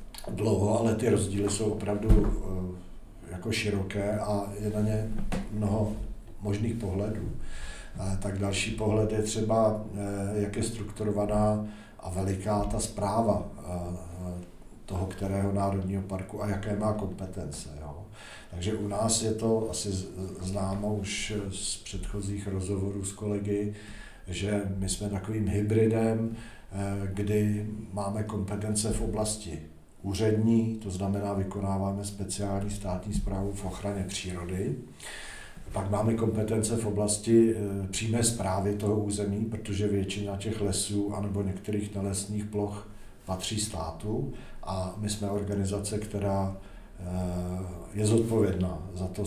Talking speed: 115 wpm